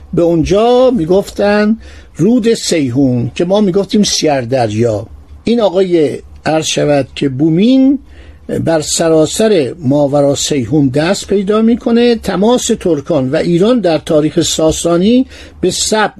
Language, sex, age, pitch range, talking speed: Persian, male, 50-69, 140-210 Hz, 115 wpm